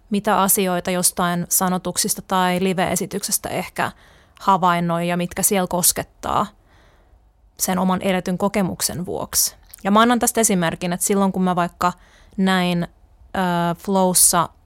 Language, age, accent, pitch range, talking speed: Finnish, 20-39, native, 175-195 Hz, 125 wpm